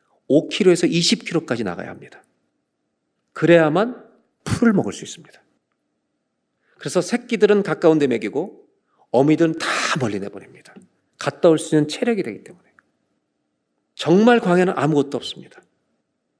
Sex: male